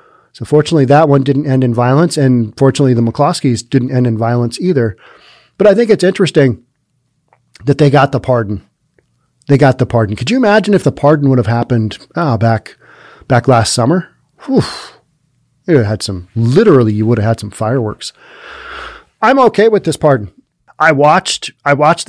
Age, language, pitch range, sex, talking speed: 30-49, English, 120-170 Hz, male, 170 wpm